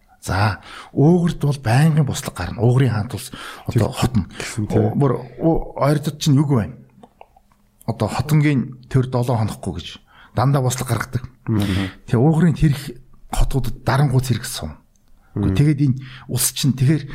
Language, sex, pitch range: Korean, male, 110-145 Hz